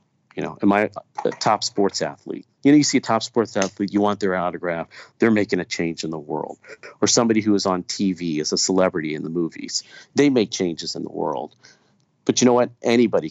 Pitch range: 95-110 Hz